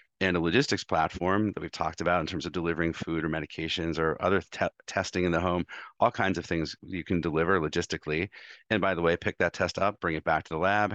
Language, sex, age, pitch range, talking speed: English, male, 40-59, 85-100 Hz, 235 wpm